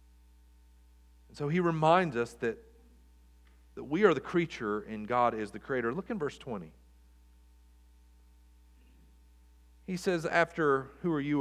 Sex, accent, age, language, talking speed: male, American, 40-59, English, 130 wpm